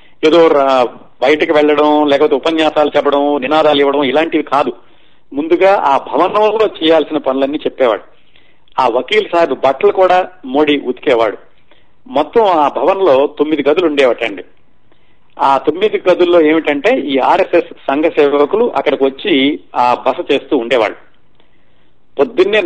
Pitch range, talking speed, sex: 135-165 Hz, 115 wpm, male